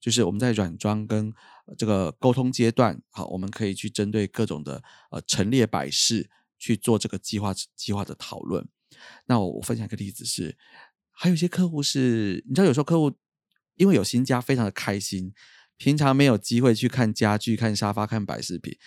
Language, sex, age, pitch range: Chinese, male, 30-49, 110-160 Hz